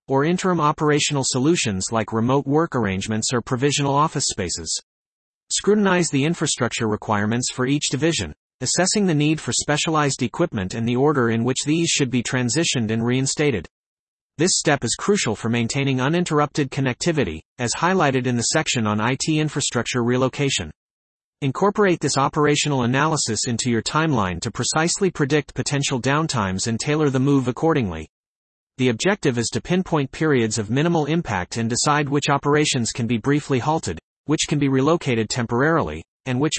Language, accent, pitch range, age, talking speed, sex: English, American, 120-155 Hz, 30-49, 155 wpm, male